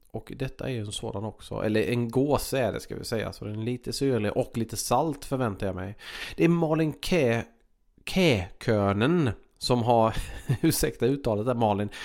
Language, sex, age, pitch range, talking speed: Swedish, male, 30-49, 110-130 Hz, 190 wpm